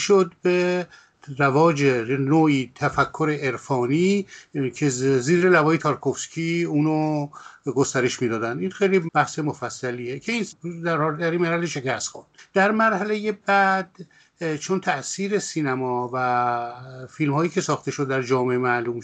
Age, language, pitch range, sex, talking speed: 50-69, Persian, 130-170 Hz, male, 125 wpm